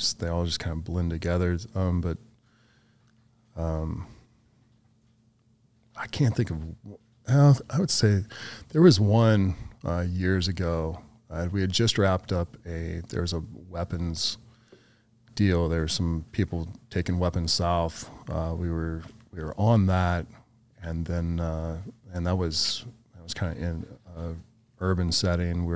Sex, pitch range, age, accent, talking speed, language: male, 85-110 Hz, 30-49, American, 150 wpm, English